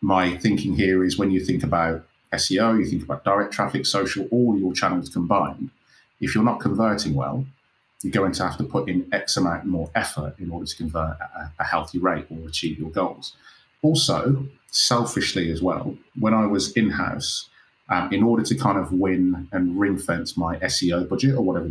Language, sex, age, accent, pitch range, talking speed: English, male, 30-49, British, 85-110 Hz, 190 wpm